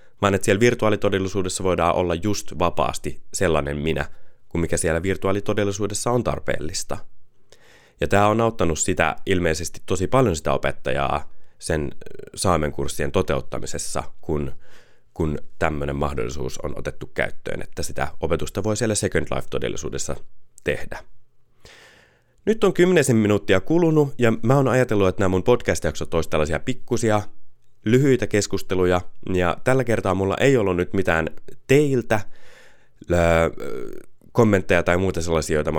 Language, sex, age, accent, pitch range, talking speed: Finnish, male, 30-49, native, 80-110 Hz, 130 wpm